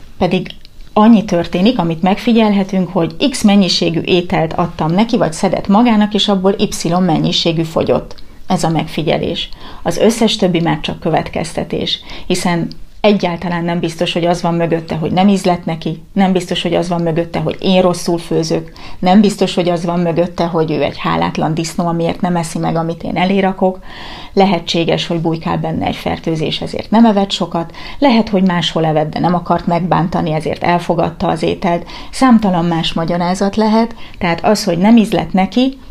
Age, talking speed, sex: 30-49, 165 wpm, female